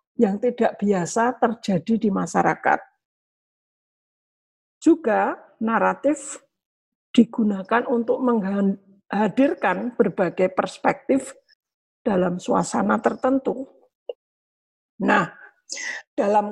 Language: English